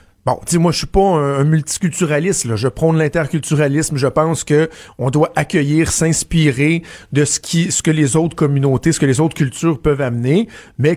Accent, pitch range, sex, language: Canadian, 135-180 Hz, male, French